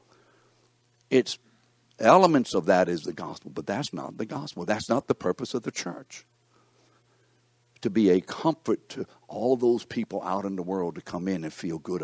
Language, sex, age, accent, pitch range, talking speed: English, male, 60-79, American, 90-120 Hz, 185 wpm